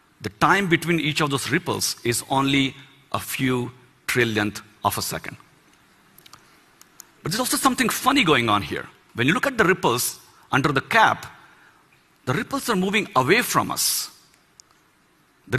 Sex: male